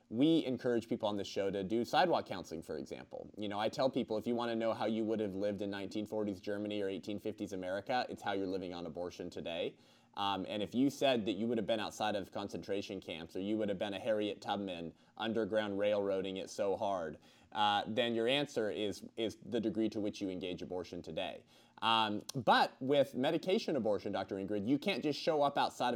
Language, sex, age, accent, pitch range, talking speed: English, male, 30-49, American, 100-120 Hz, 215 wpm